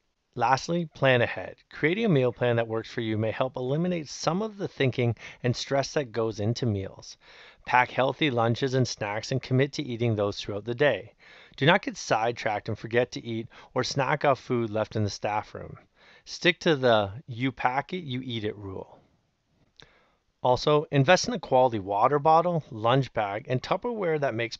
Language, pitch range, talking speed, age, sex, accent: English, 115-140 Hz, 190 wpm, 30-49, male, American